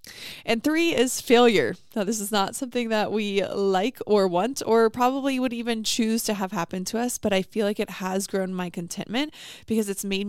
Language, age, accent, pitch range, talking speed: English, 20-39, American, 190-220 Hz, 210 wpm